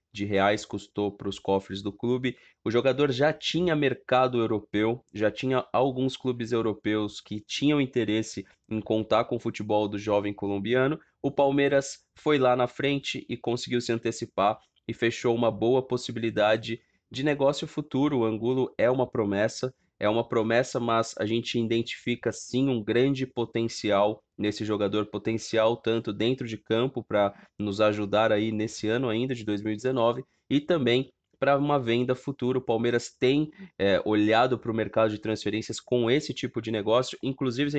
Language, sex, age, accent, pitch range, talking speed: Portuguese, male, 20-39, Brazilian, 110-130 Hz, 165 wpm